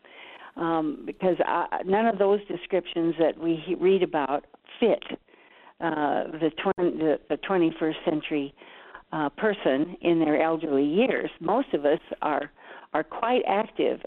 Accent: American